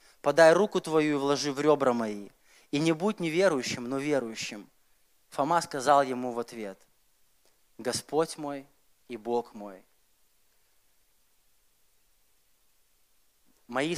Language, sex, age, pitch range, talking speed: Russian, male, 20-39, 140-170 Hz, 105 wpm